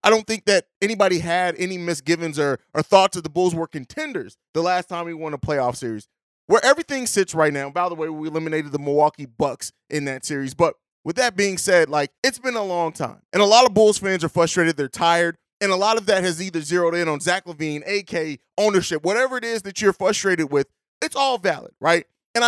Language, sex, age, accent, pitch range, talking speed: English, male, 30-49, American, 165-215 Hz, 230 wpm